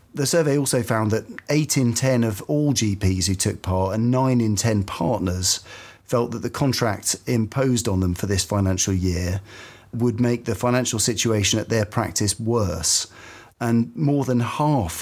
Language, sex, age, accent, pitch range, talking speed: English, male, 40-59, British, 100-125 Hz, 170 wpm